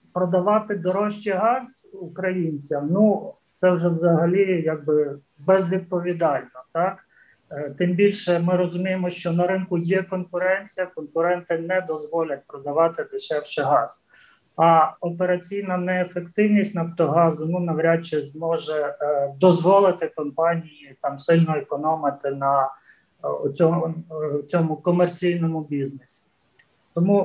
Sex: male